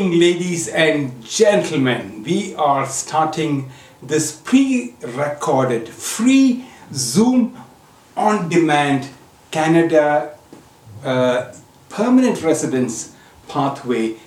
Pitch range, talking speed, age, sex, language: 130-180 Hz, 75 wpm, 60-79, male, English